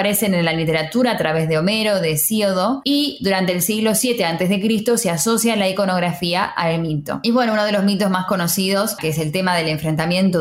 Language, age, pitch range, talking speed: Spanish, 10-29, 170-210 Hz, 215 wpm